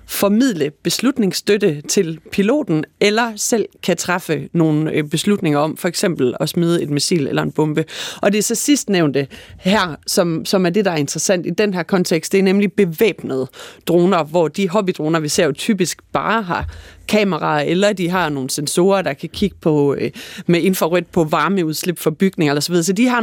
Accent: native